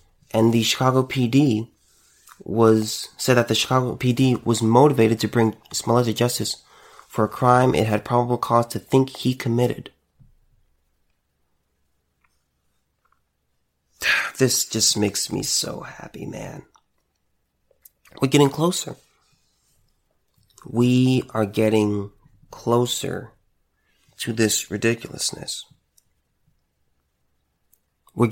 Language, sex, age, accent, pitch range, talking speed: English, male, 30-49, American, 80-125 Hz, 95 wpm